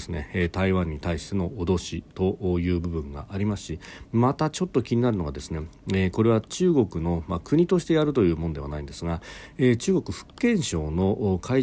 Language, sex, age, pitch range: Japanese, male, 40-59, 85-120 Hz